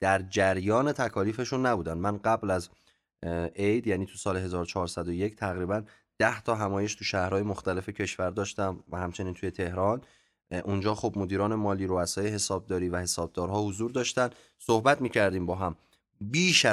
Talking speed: 145 wpm